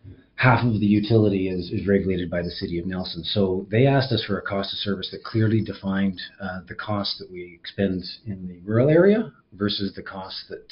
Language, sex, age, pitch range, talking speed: English, male, 30-49, 95-115 Hz, 215 wpm